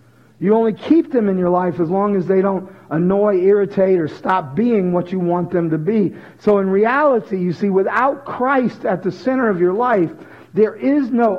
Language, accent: English, American